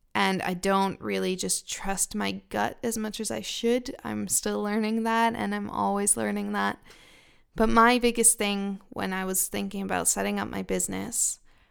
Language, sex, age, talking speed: English, female, 20-39, 180 wpm